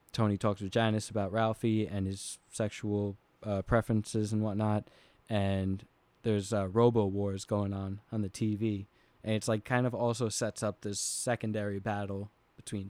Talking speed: 165 wpm